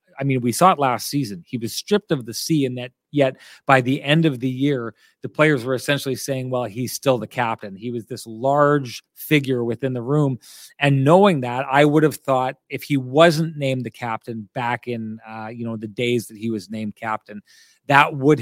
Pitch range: 120-145 Hz